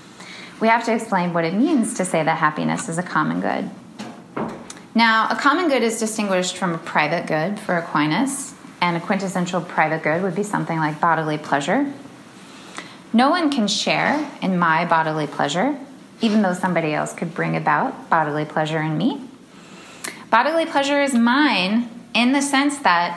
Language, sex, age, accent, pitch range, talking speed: English, female, 20-39, American, 165-230 Hz, 170 wpm